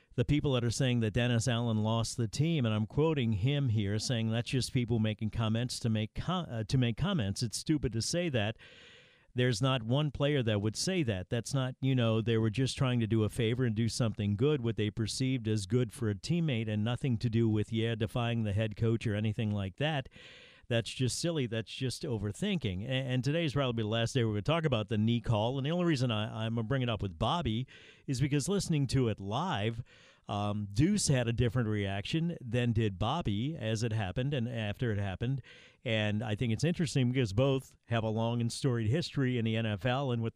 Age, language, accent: 50-69, English, American